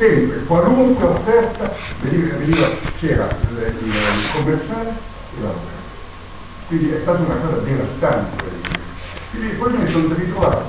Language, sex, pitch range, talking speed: Italian, male, 90-125 Hz, 125 wpm